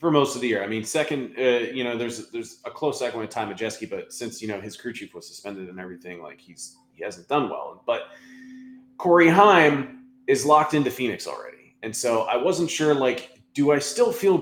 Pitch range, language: 105-150 Hz, English